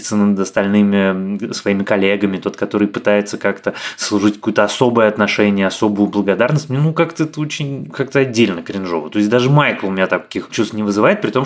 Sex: male